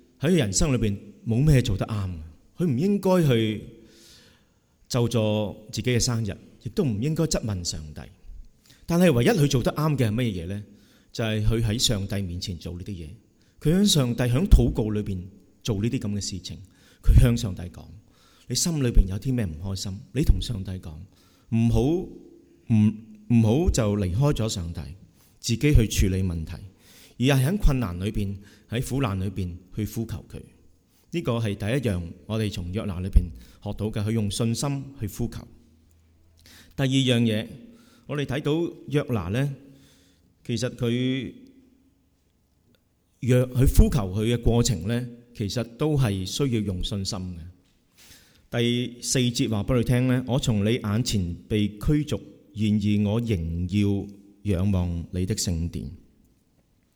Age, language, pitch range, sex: 30-49, English, 95-125 Hz, male